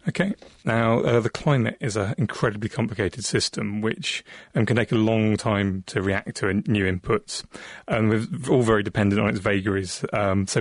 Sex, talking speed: male, 180 wpm